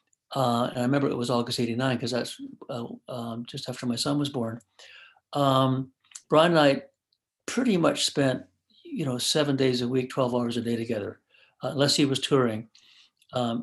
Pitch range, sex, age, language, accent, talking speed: 120-150 Hz, male, 60-79, English, American, 185 wpm